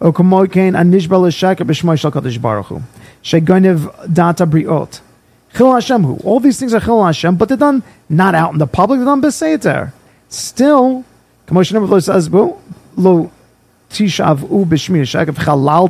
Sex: male